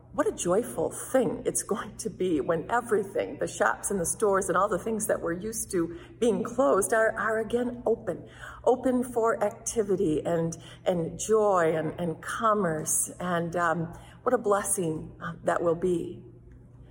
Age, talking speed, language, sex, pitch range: 40-59, 165 wpm, English, female, 160-230 Hz